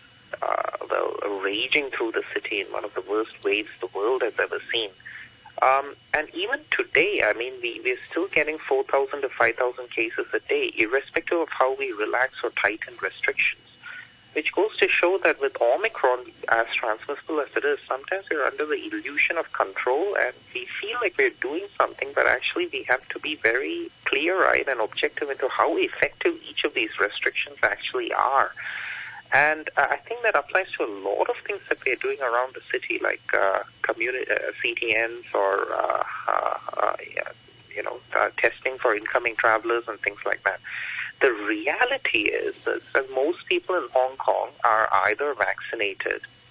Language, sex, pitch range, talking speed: English, male, 355-435 Hz, 175 wpm